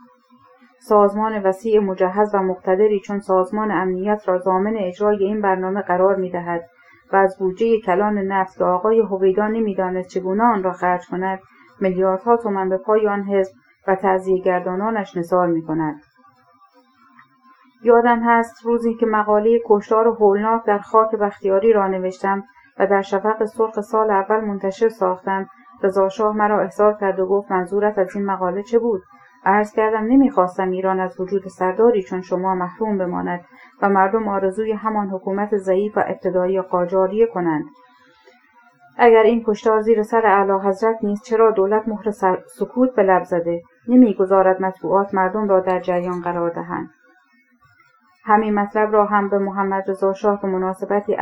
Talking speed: 145 wpm